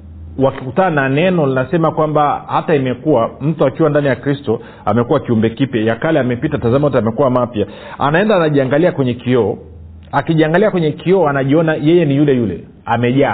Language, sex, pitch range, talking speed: Swahili, male, 115-155 Hz, 145 wpm